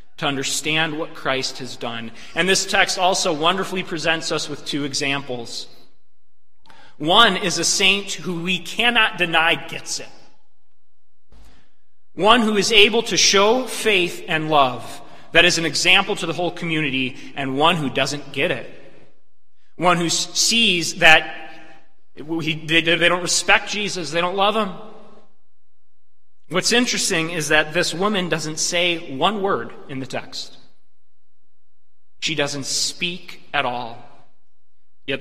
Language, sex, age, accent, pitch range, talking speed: English, male, 30-49, American, 130-170 Hz, 135 wpm